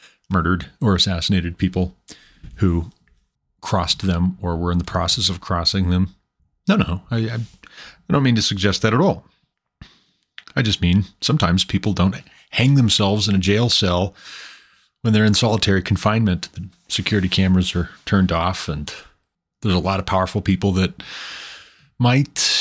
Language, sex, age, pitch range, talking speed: English, male, 30-49, 90-115 Hz, 155 wpm